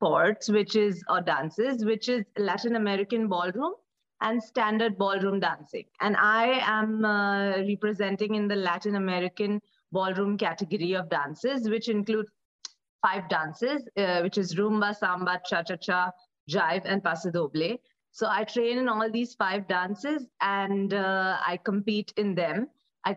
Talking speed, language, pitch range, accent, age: 150 wpm, English, 180-220 Hz, Indian, 30-49